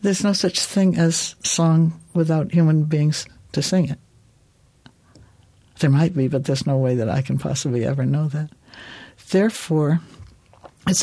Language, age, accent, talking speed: English, 60-79, American, 150 wpm